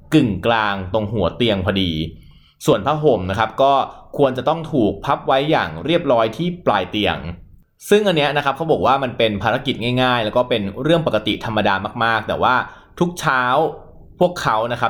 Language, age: Thai, 20-39